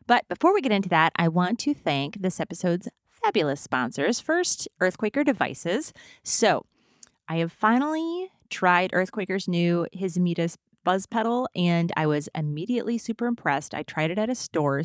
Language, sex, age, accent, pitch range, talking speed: English, female, 30-49, American, 160-210 Hz, 160 wpm